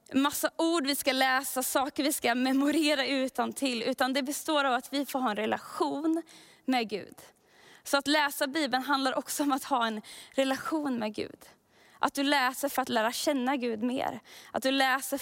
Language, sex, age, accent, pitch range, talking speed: Swedish, female, 20-39, native, 240-285 Hz, 190 wpm